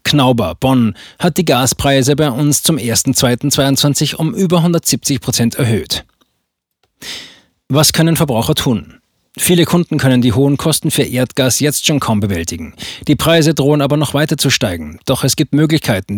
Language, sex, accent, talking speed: German, male, German, 150 wpm